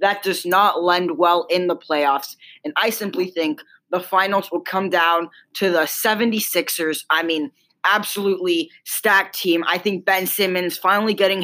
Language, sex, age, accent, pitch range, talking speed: English, female, 10-29, American, 175-220 Hz, 165 wpm